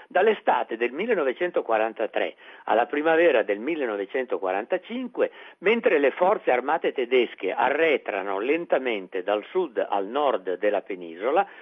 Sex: male